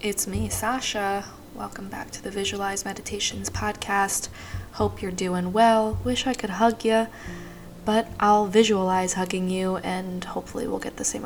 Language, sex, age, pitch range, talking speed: English, female, 10-29, 170-205 Hz, 160 wpm